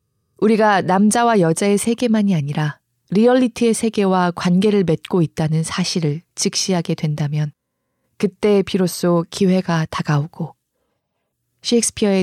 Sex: female